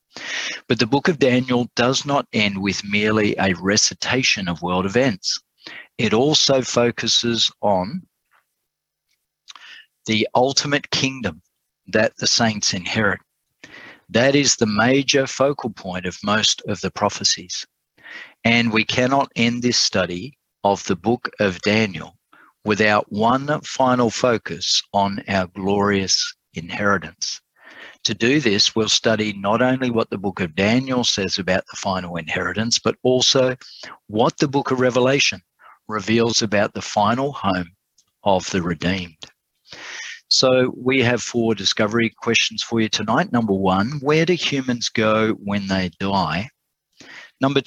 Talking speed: 135 wpm